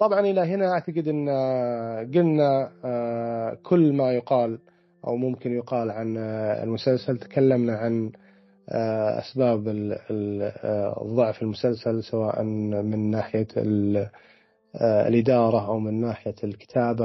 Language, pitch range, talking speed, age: Arabic, 115-135 Hz, 90 wpm, 30-49